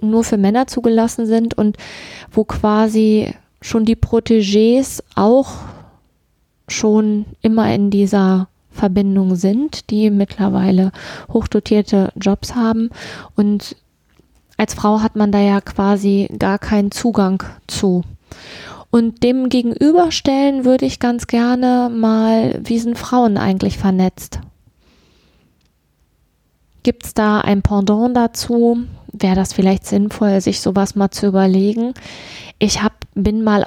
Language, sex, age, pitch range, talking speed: German, female, 20-39, 195-230 Hz, 120 wpm